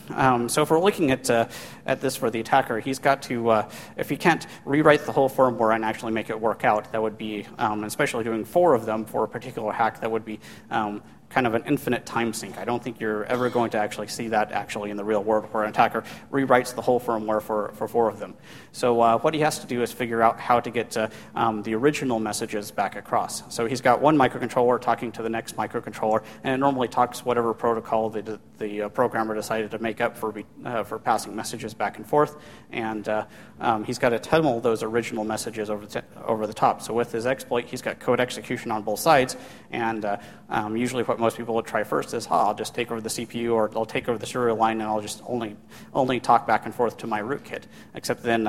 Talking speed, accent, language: 245 wpm, American, English